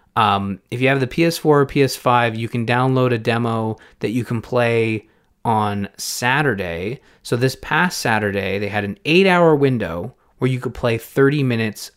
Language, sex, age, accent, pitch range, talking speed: English, male, 30-49, American, 100-125 Hz, 175 wpm